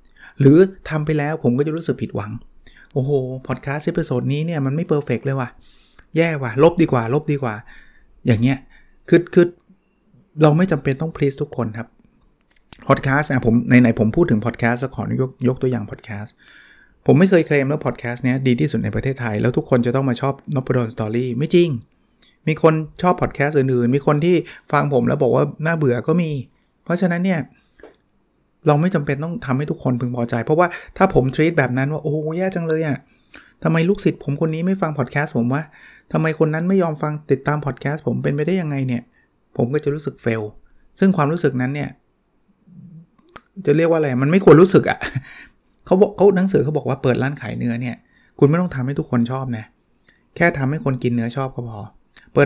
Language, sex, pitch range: Thai, male, 125-160 Hz